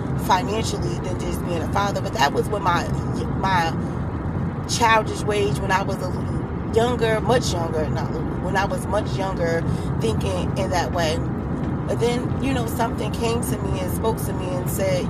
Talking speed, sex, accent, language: 185 wpm, female, American, English